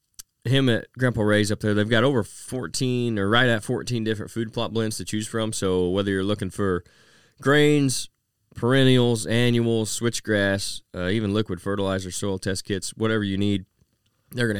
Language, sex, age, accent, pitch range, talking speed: English, male, 20-39, American, 95-115 Hz, 175 wpm